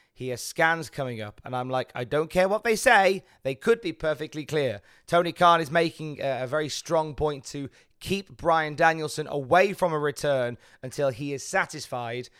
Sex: male